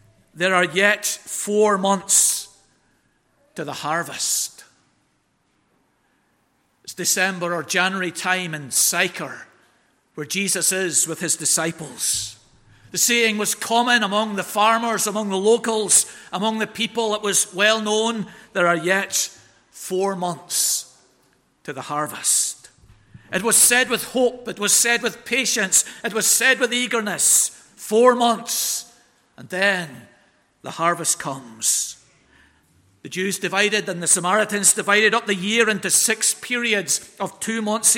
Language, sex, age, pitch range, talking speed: English, male, 50-69, 180-230 Hz, 135 wpm